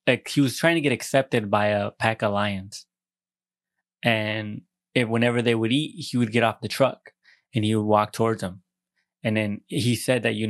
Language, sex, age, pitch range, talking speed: English, male, 20-39, 105-125 Hz, 205 wpm